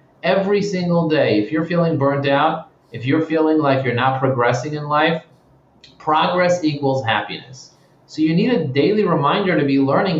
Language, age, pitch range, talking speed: English, 30-49, 125-160 Hz, 170 wpm